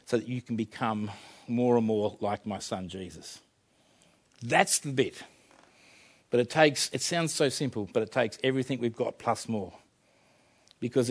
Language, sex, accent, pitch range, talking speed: English, male, Australian, 120-150 Hz, 165 wpm